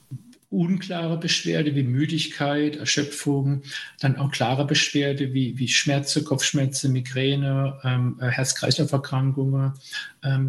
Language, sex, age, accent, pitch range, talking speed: German, male, 50-69, German, 140-160 Hz, 95 wpm